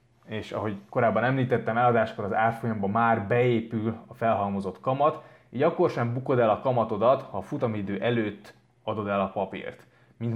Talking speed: 160 wpm